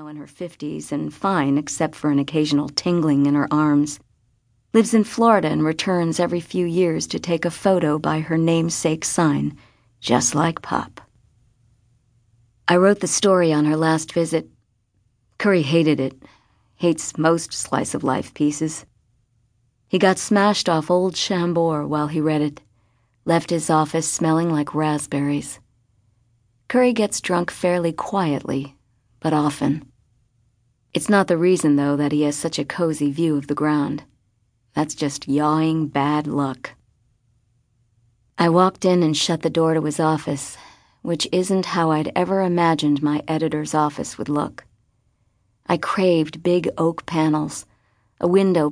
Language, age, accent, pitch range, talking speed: English, 50-69, American, 120-165 Hz, 145 wpm